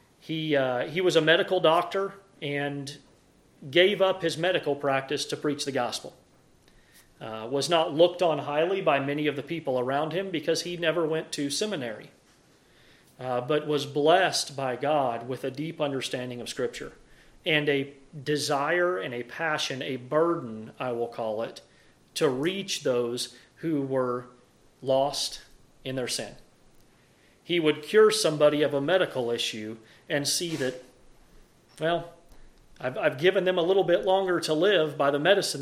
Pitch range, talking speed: 135-175 Hz, 160 wpm